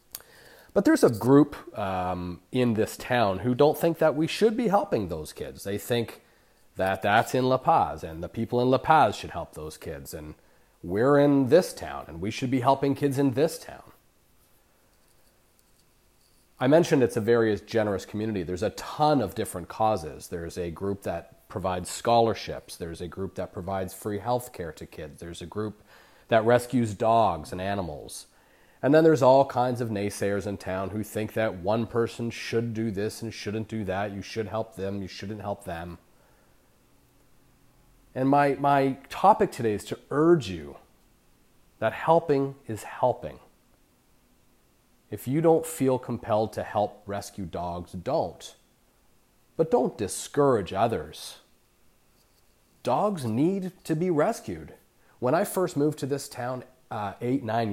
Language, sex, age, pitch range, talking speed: English, male, 30-49, 100-135 Hz, 165 wpm